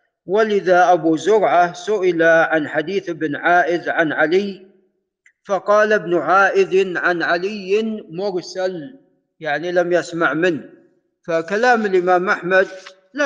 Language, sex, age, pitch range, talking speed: Arabic, male, 50-69, 175-215 Hz, 110 wpm